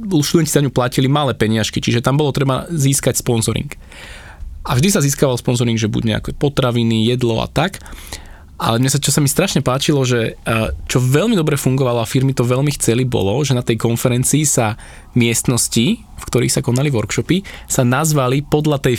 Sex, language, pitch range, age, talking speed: male, Slovak, 115-140 Hz, 20-39, 185 wpm